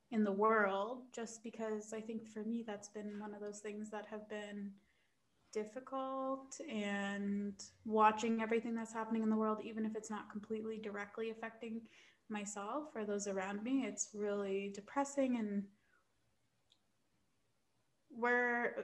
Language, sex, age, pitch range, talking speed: English, female, 20-39, 200-230 Hz, 140 wpm